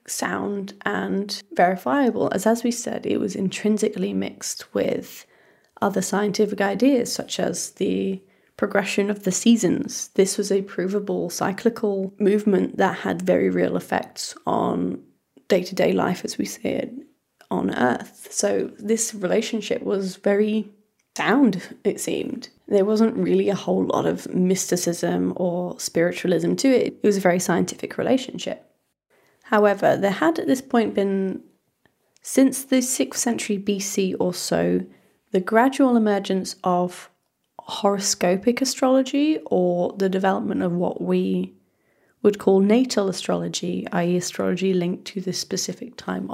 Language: English